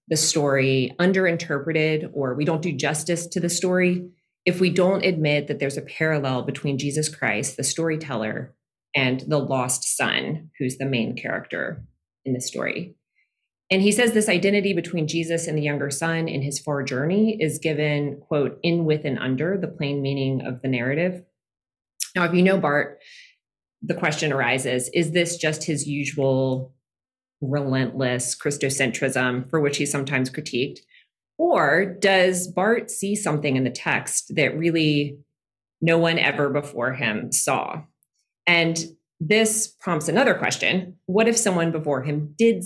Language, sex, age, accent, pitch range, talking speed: English, female, 30-49, American, 135-175 Hz, 155 wpm